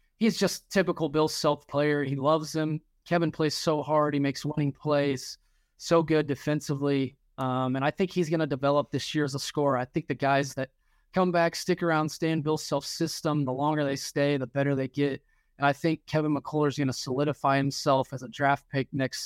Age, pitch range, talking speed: 20-39, 135-155 Hz, 220 wpm